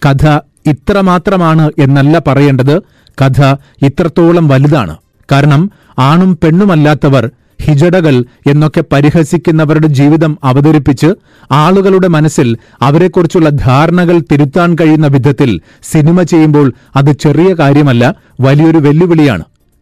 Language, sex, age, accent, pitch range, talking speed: Malayalam, male, 40-59, native, 140-175 Hz, 90 wpm